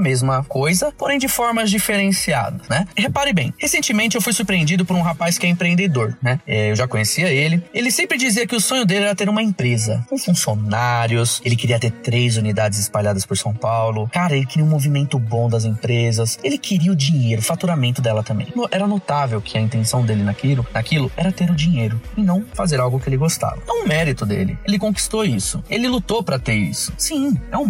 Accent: Brazilian